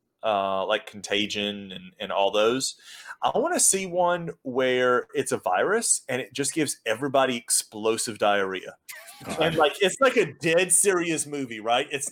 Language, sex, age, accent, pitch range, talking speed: English, male, 30-49, American, 120-150 Hz, 160 wpm